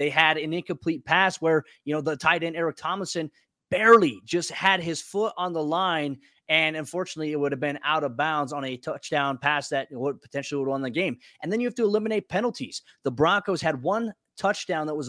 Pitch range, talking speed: 135-155 Hz, 220 wpm